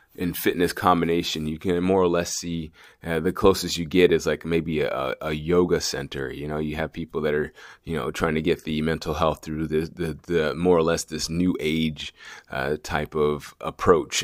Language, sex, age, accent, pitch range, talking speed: English, male, 30-49, American, 75-85 Hz, 205 wpm